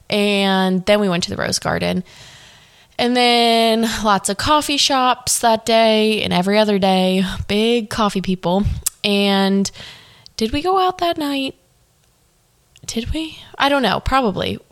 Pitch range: 185-225 Hz